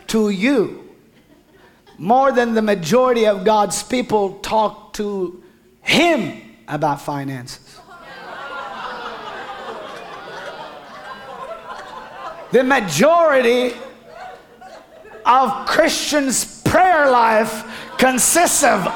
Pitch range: 185-275 Hz